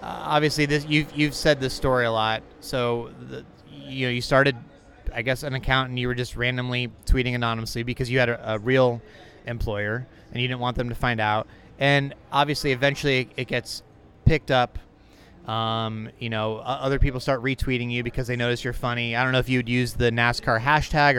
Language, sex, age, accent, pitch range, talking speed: English, male, 30-49, American, 115-135 Hz, 205 wpm